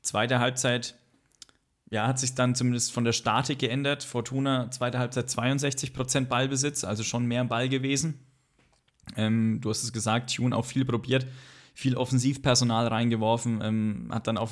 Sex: male